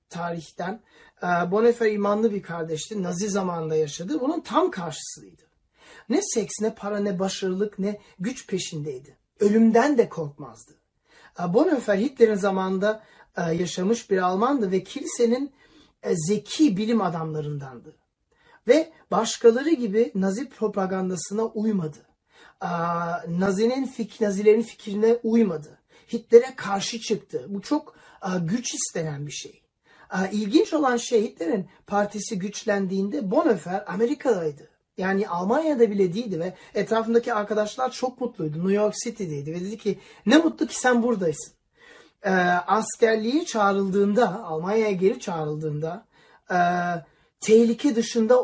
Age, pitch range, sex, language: 40-59, 175-230 Hz, male, Turkish